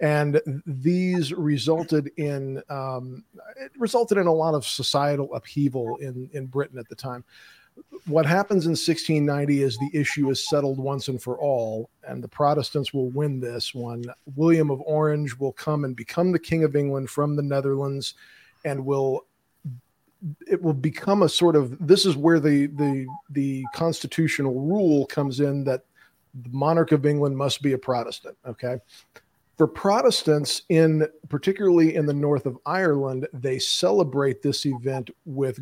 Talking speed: 160 wpm